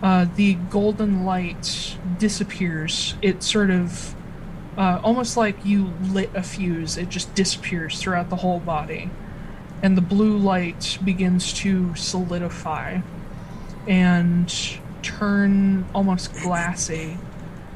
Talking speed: 110 wpm